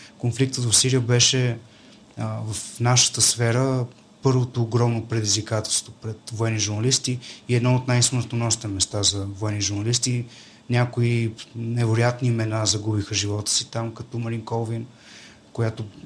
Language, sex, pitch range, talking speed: Bulgarian, male, 110-135 Hz, 125 wpm